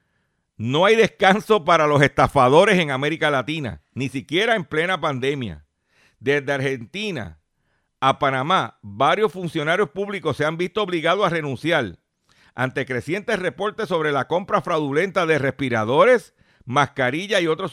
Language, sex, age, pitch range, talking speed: Spanish, male, 50-69, 135-195 Hz, 130 wpm